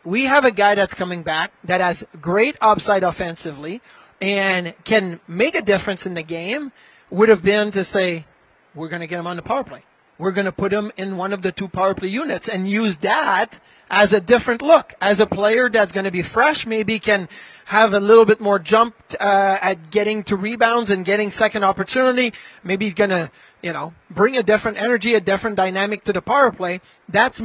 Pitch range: 190-225 Hz